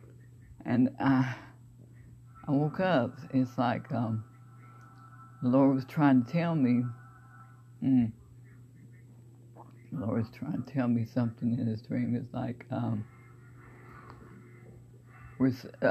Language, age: English, 60-79